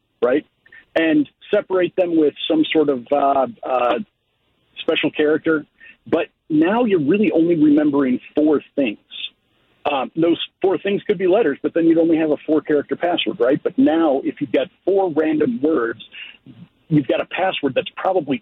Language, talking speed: English, 165 wpm